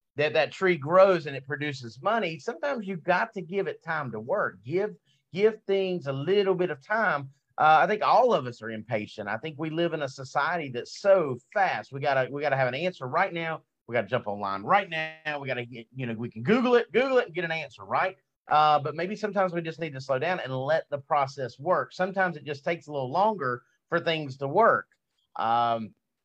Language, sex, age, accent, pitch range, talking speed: English, male, 40-59, American, 125-180 Hz, 230 wpm